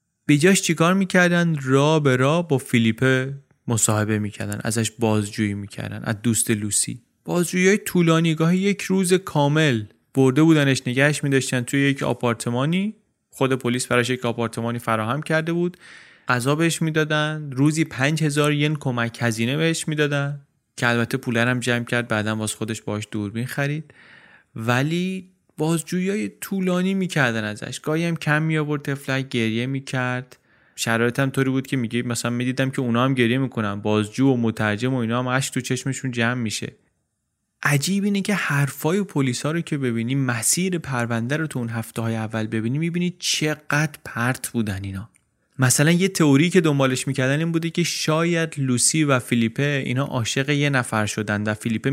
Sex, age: male, 30-49